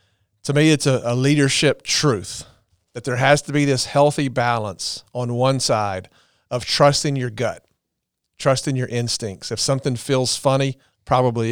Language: English